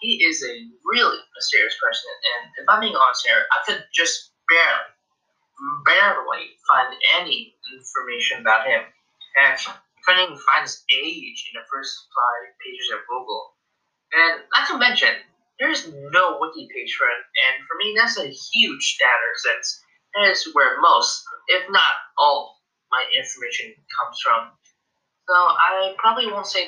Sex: male